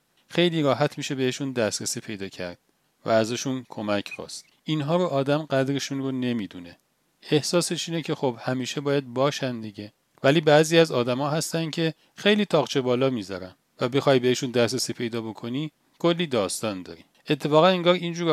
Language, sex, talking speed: Persian, male, 150 wpm